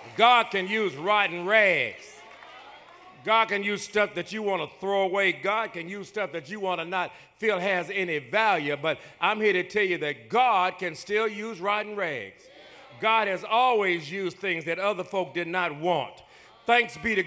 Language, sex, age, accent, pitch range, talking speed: English, male, 50-69, American, 180-225 Hz, 190 wpm